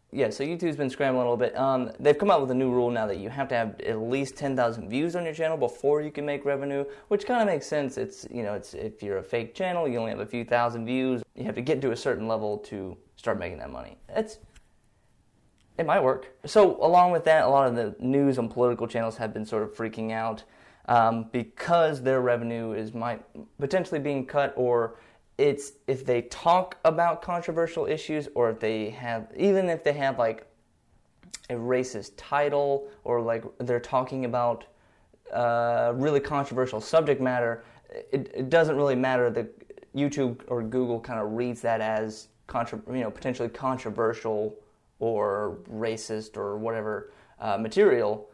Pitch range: 115-145 Hz